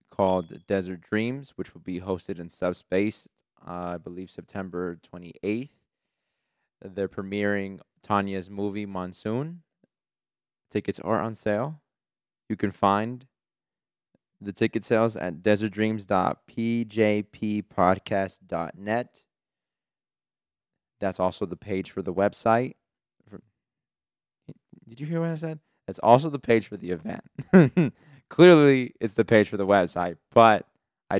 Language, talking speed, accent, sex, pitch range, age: English, 115 wpm, American, male, 95-115 Hz, 20-39